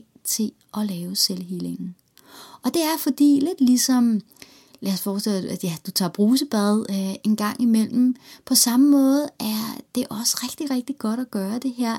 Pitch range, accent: 195-255 Hz, native